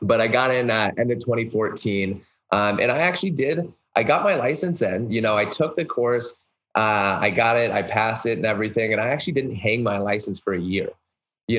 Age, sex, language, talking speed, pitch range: 20-39, male, English, 235 wpm, 100-115 Hz